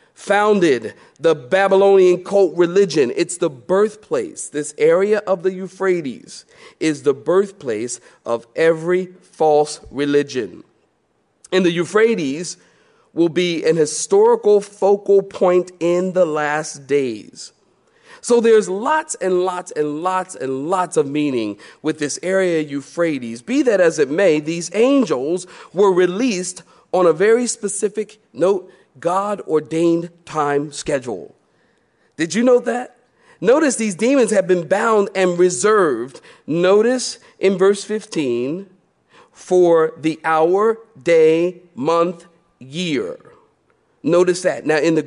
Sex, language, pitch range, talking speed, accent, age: male, English, 160-210 Hz, 125 wpm, American, 40-59